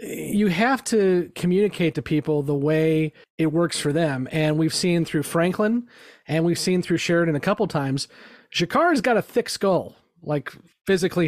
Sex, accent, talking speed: male, American, 170 wpm